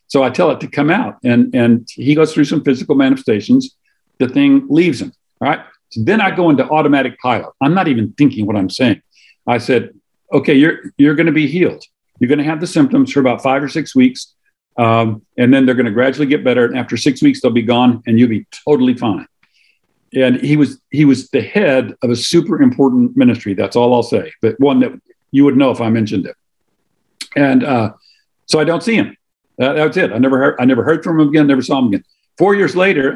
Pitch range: 120-155 Hz